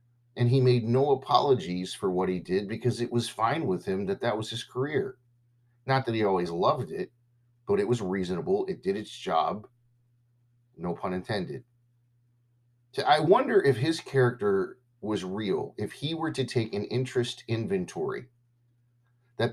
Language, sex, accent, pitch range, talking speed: English, male, American, 120-125 Hz, 165 wpm